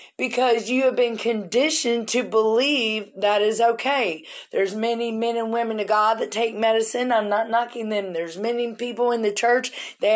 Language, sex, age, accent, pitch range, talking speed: English, female, 40-59, American, 225-275 Hz, 185 wpm